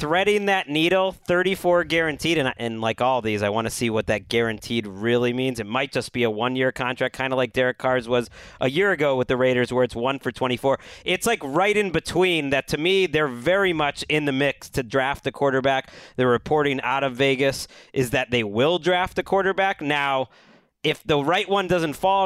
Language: English